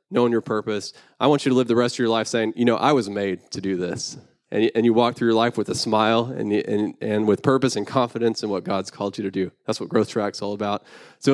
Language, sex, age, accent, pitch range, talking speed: English, male, 20-39, American, 110-130 Hz, 265 wpm